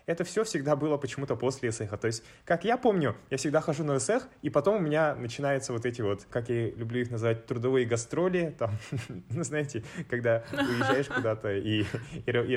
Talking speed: 180 wpm